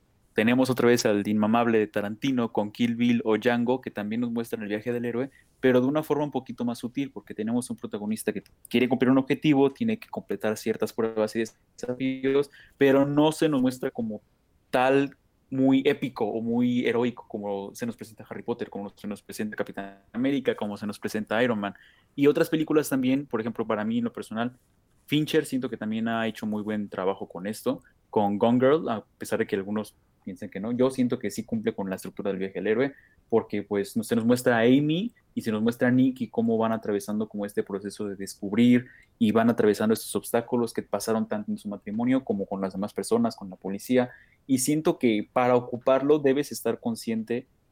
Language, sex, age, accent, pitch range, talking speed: Spanish, male, 20-39, Mexican, 105-145 Hz, 210 wpm